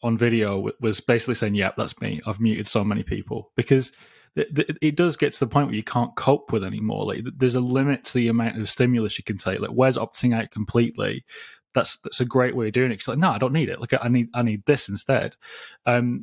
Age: 20-39